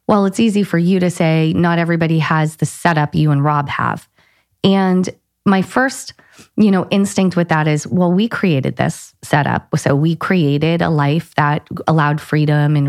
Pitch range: 150-195 Hz